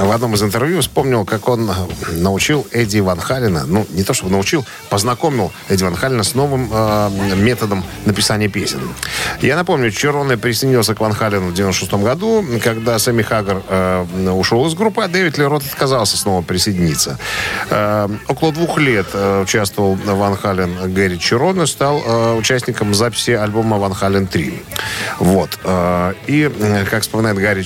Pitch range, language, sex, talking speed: 100-125 Hz, Russian, male, 150 wpm